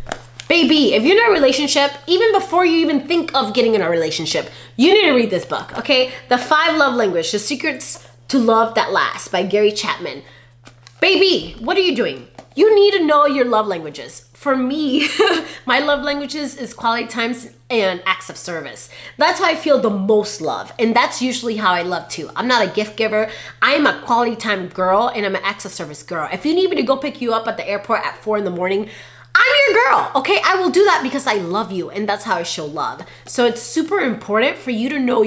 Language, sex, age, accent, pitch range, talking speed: English, female, 20-39, American, 195-290 Hz, 230 wpm